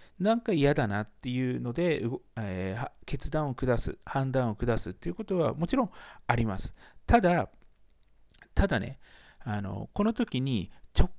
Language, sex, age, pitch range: Japanese, male, 40-59, 115-180 Hz